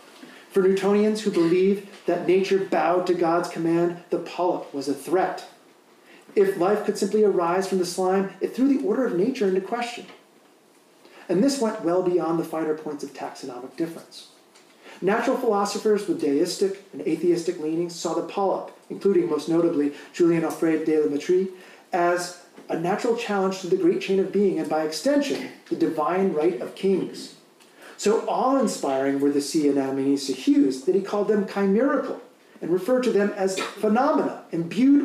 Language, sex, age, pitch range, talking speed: English, male, 40-59, 170-235 Hz, 170 wpm